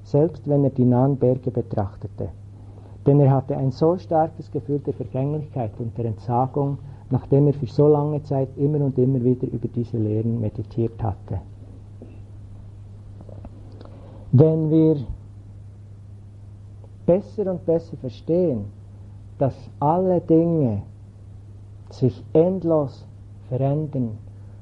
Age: 60-79